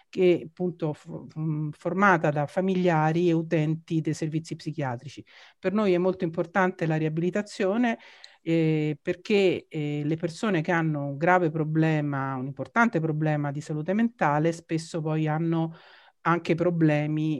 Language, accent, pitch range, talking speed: Italian, native, 145-175 Hz, 130 wpm